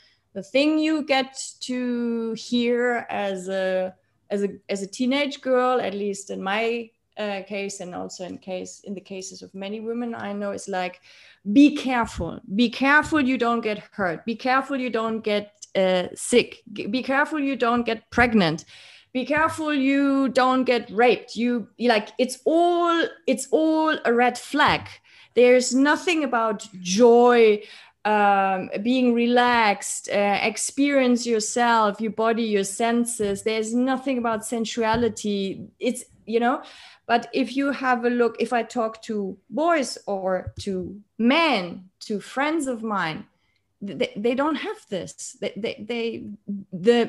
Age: 30-49